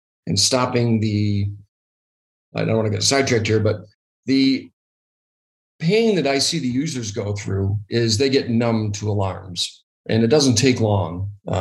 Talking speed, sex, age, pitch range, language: 165 wpm, male, 40-59, 105-130 Hz, English